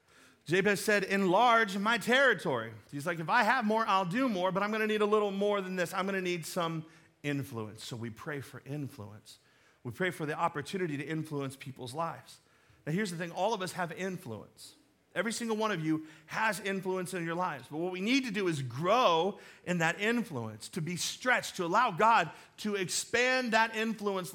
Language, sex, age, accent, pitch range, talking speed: English, male, 40-59, American, 155-215 Hz, 200 wpm